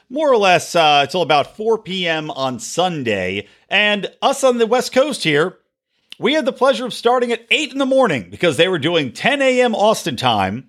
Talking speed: 200 wpm